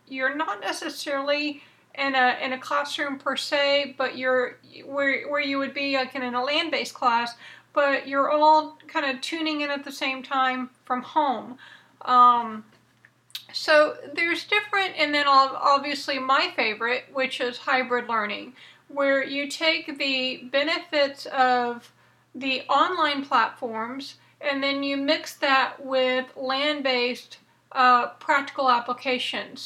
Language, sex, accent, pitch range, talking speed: English, female, American, 250-295 Hz, 135 wpm